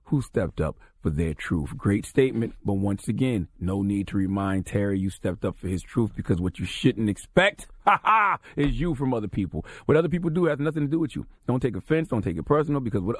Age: 40-59